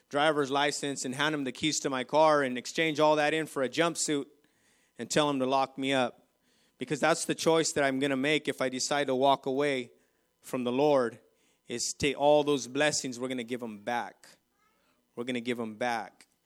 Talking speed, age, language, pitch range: 220 wpm, 30-49, English, 130-150 Hz